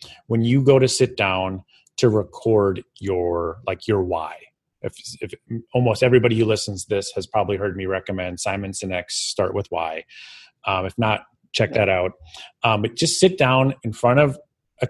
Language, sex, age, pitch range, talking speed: English, male, 30-49, 100-130 Hz, 180 wpm